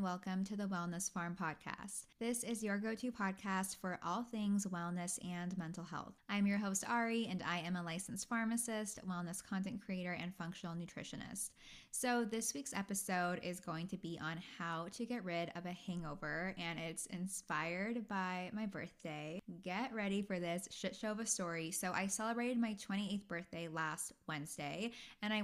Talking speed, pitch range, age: 175 wpm, 175-220 Hz, 10-29